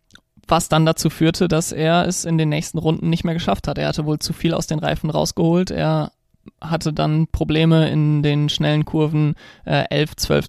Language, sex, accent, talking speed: German, male, German, 195 wpm